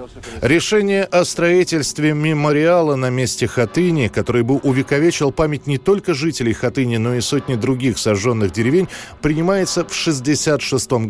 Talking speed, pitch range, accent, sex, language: 130 wpm, 105-140 Hz, native, male, Russian